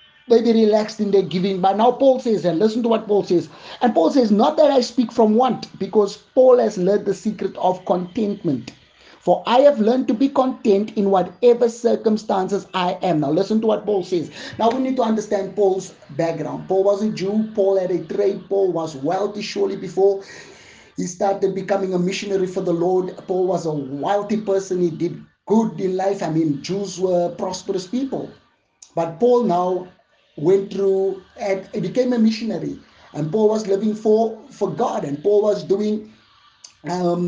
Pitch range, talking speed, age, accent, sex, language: 185-215 Hz, 185 wpm, 30-49, South African, male, English